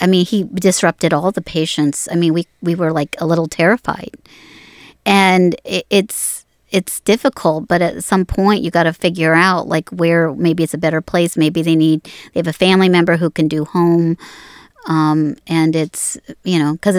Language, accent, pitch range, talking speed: English, American, 165-200 Hz, 195 wpm